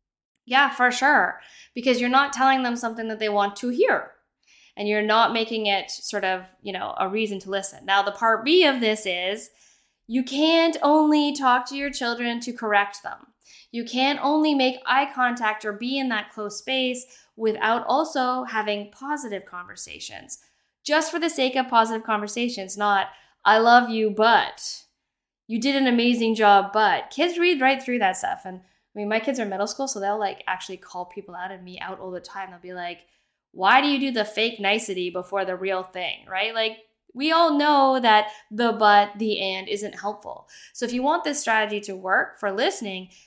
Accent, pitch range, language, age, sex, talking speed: American, 200-260 Hz, English, 10-29, female, 200 wpm